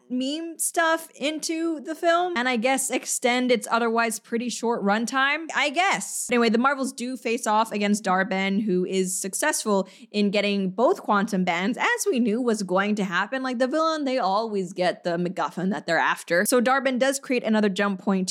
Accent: American